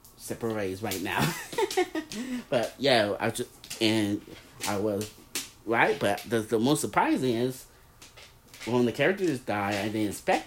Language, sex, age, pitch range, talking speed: English, male, 30-49, 105-120 Hz, 140 wpm